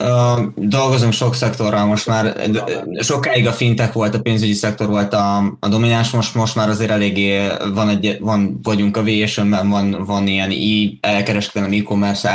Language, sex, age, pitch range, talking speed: Hungarian, male, 20-39, 100-110 Hz, 160 wpm